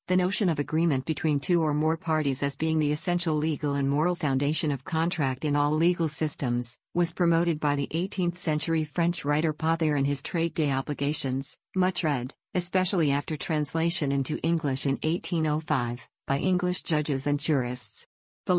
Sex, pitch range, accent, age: female, 140-165 Hz, American, 50-69